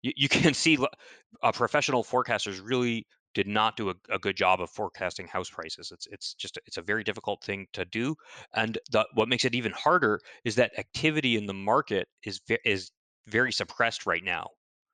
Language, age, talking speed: English, 30-49, 195 wpm